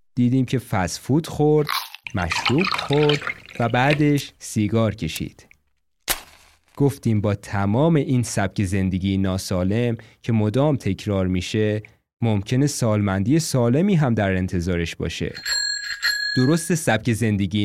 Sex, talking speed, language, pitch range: male, 105 wpm, Persian, 95-130 Hz